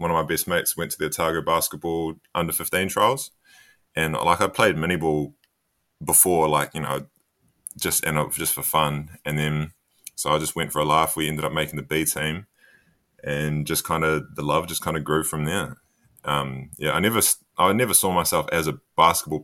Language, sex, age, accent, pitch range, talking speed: English, male, 20-39, Australian, 75-80 Hz, 205 wpm